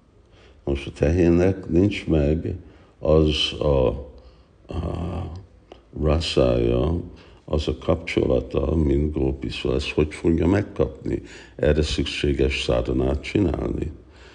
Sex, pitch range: male, 70-80 Hz